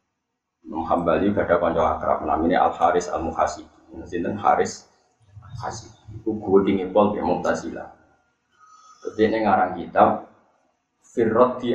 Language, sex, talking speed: Indonesian, male, 130 wpm